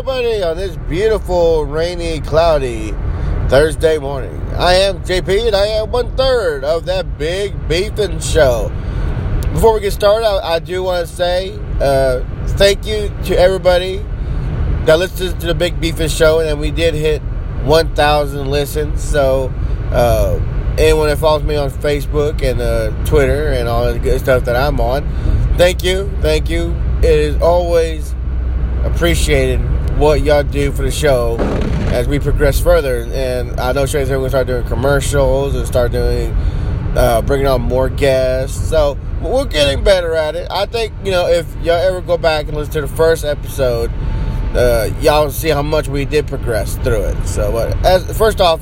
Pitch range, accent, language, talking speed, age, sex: 120-160 Hz, American, English, 175 wpm, 20-39, male